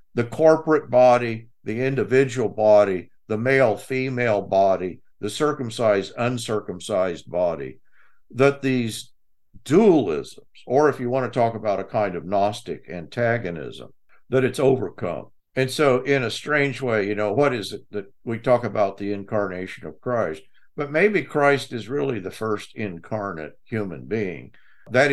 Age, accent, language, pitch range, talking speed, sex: 50-69, American, English, 100-130 Hz, 145 wpm, male